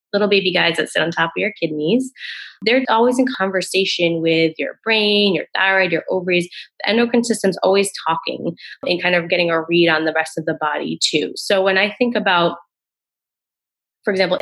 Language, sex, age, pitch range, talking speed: English, female, 20-39, 170-210 Hz, 190 wpm